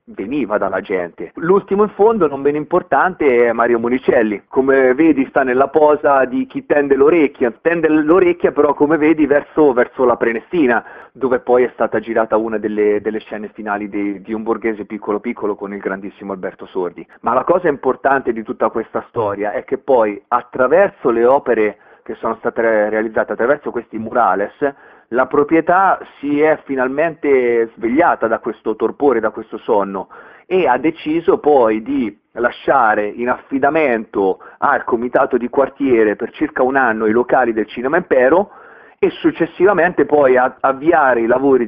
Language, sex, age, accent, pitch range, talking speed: Italian, male, 40-59, native, 110-155 Hz, 160 wpm